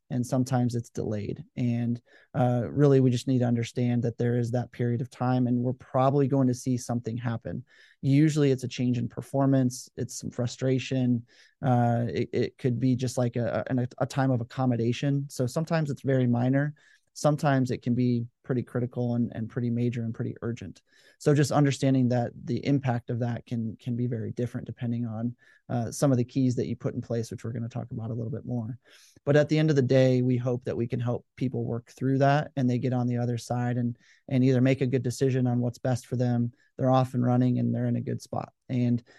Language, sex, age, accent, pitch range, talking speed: English, male, 30-49, American, 120-135 Hz, 230 wpm